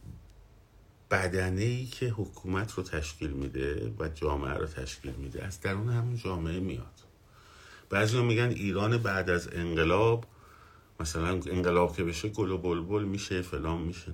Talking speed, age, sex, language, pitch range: 130 wpm, 50-69, male, Persian, 75-105 Hz